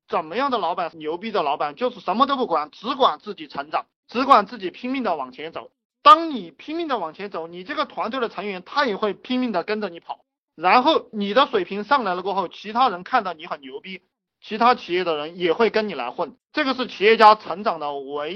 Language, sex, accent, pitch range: Chinese, male, native, 170-250 Hz